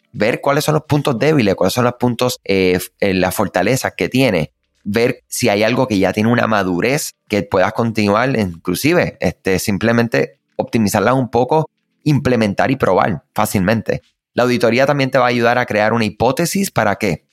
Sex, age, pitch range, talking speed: male, 30-49, 95-125 Hz, 175 wpm